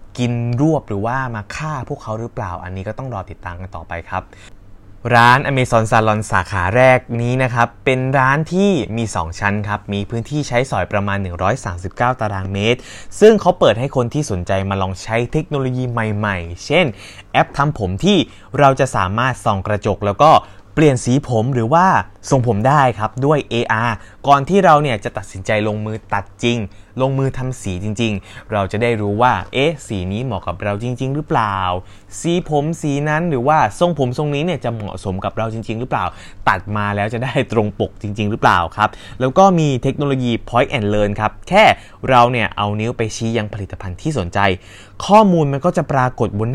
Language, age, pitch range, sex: Thai, 20-39, 100-130 Hz, male